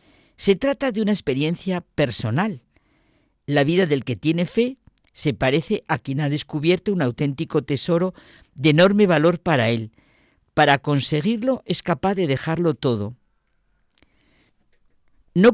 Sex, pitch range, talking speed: female, 125-175 Hz, 130 wpm